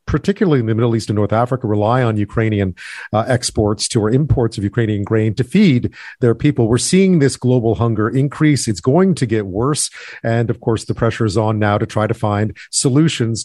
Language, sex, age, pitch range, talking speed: English, male, 40-59, 115-135 Hz, 210 wpm